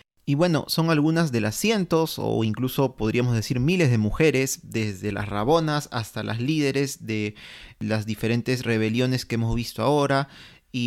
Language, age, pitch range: Spanish, 30-49, 120-145 Hz